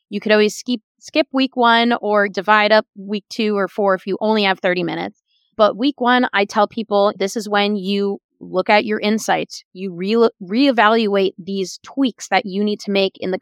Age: 20-39